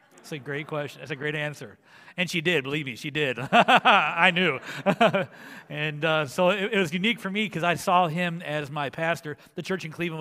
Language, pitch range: English, 140-175 Hz